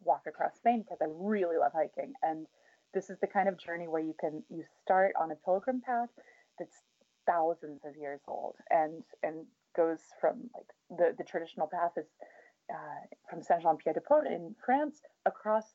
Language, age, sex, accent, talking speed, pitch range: English, 20-39, female, American, 170 wpm, 165-220 Hz